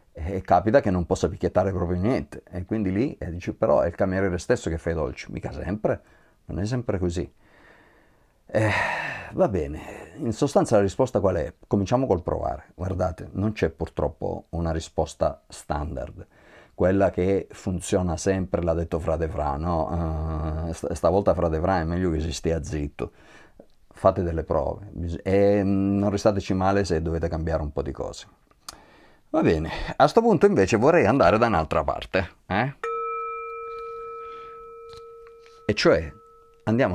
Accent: native